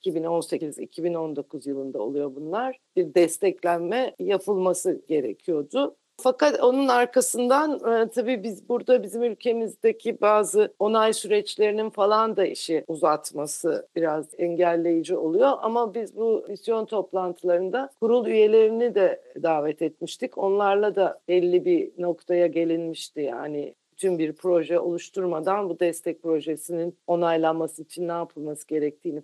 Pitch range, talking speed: 170-225 Hz, 115 wpm